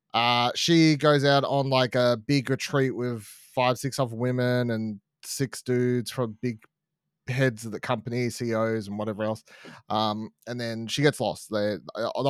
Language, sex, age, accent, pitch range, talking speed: English, male, 30-49, Australian, 110-140 Hz, 175 wpm